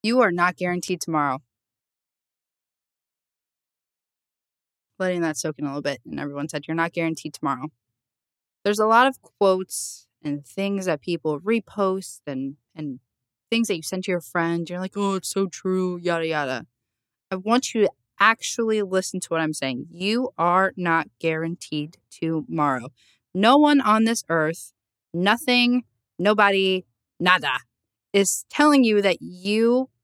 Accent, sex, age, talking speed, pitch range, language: American, female, 20-39, 150 wpm, 145-205 Hz, English